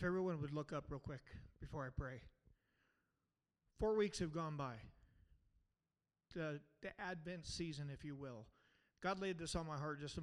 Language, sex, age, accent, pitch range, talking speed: English, male, 40-59, American, 145-180 Hz, 175 wpm